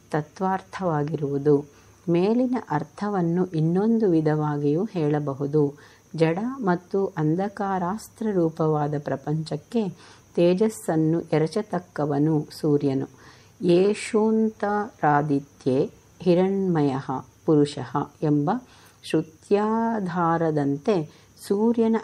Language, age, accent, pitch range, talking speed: Kannada, 50-69, native, 150-200 Hz, 55 wpm